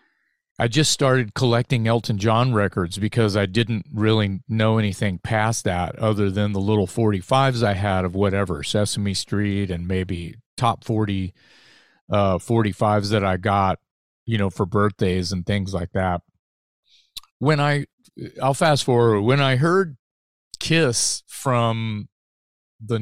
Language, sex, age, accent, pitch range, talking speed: English, male, 40-59, American, 100-125 Hz, 140 wpm